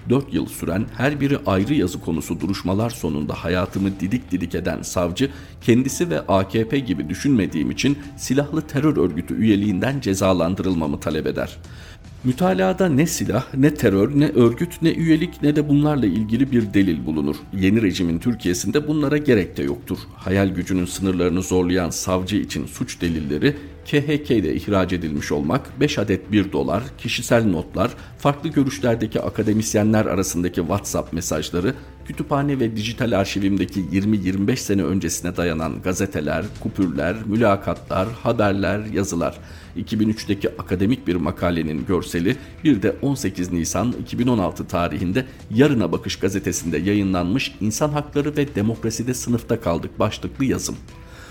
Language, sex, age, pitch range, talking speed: Turkish, male, 50-69, 90-125 Hz, 130 wpm